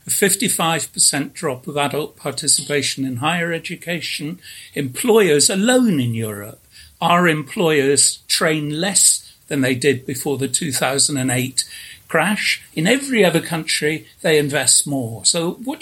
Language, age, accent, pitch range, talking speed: English, 60-79, British, 130-170 Hz, 125 wpm